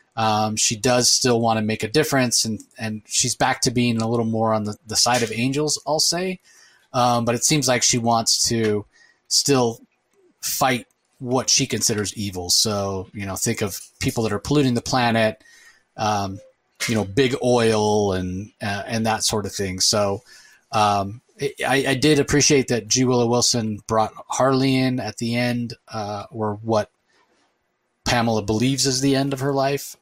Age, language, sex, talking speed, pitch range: 30-49, English, male, 180 wpm, 105-125 Hz